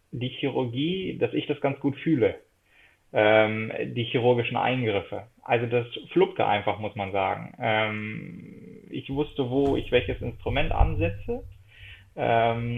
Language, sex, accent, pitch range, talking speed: German, male, German, 115-140 Hz, 130 wpm